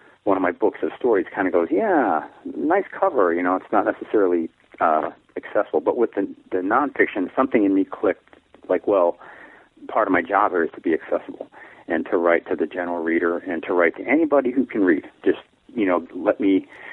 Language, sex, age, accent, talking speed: English, male, 40-59, American, 205 wpm